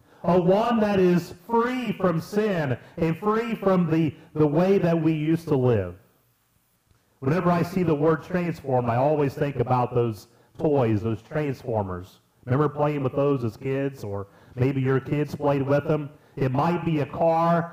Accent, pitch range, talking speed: American, 130-195 Hz, 170 wpm